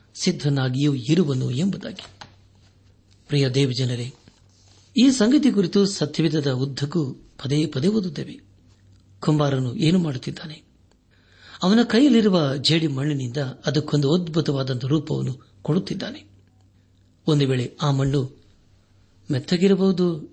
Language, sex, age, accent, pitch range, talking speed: Kannada, male, 60-79, native, 100-165 Hz, 80 wpm